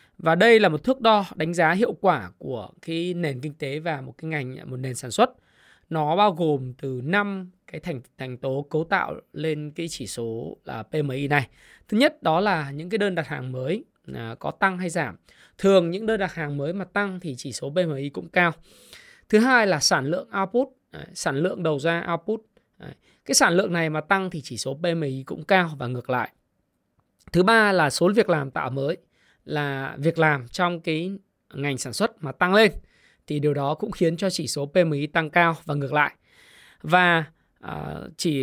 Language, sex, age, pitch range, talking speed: Vietnamese, male, 20-39, 145-190 Hz, 205 wpm